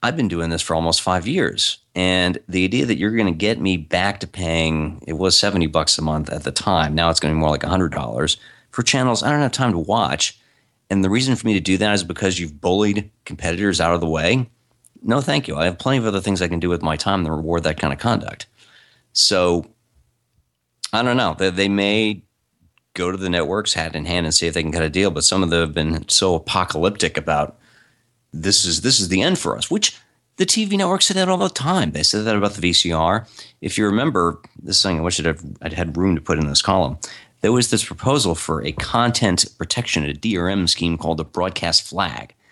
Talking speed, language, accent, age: 240 wpm, English, American, 40-59